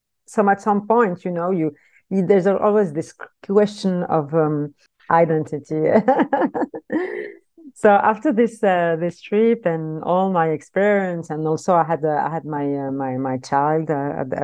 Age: 50-69